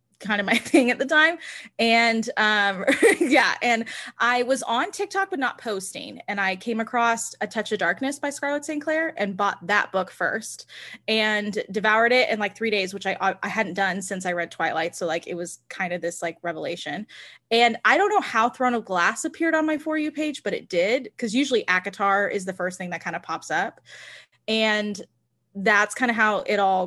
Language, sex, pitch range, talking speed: English, female, 190-235 Hz, 210 wpm